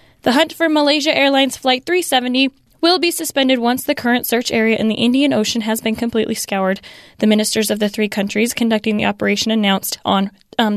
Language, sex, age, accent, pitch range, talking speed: English, female, 10-29, American, 215-275 Hz, 195 wpm